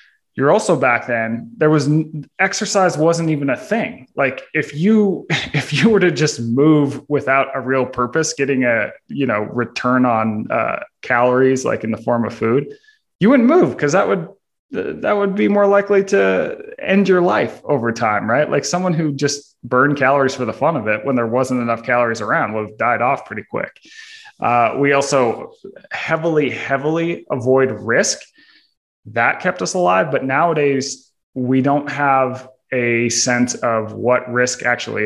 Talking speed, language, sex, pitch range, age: 175 wpm, English, male, 115-145 Hz, 20-39